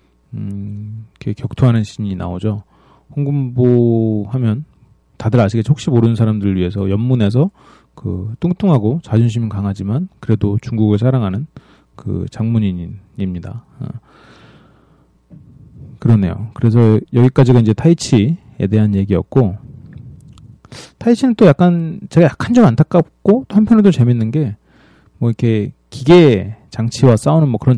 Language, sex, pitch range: Korean, male, 100-130 Hz